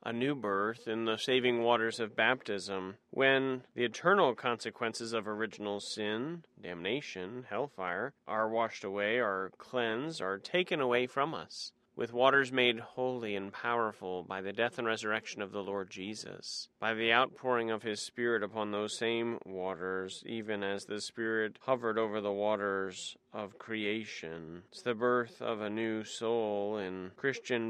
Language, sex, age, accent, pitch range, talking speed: English, male, 30-49, American, 105-125 Hz, 155 wpm